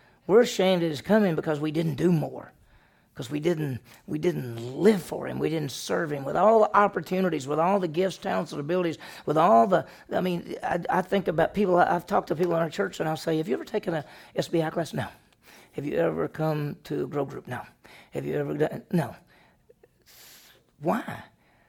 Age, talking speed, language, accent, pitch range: 40-59, 210 wpm, English, American, 145-180 Hz